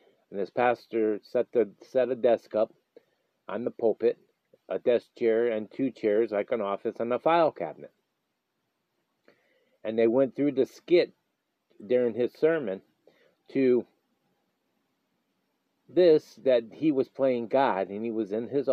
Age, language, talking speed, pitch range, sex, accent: 50-69, English, 145 wpm, 115-145 Hz, male, American